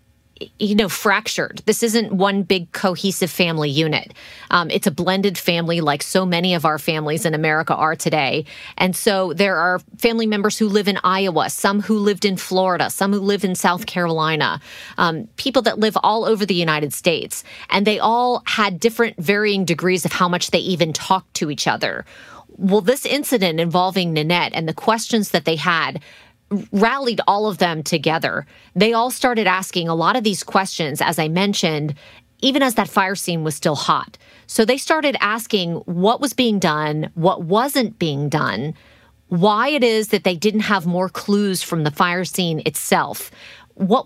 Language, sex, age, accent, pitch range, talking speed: English, female, 30-49, American, 165-215 Hz, 185 wpm